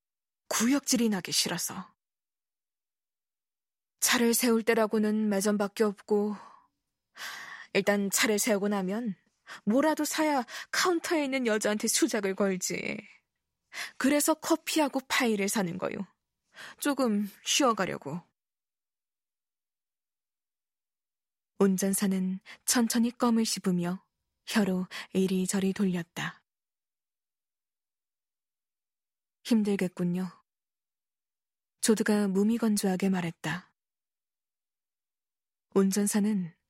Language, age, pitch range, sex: Korean, 20-39, 195-235 Hz, female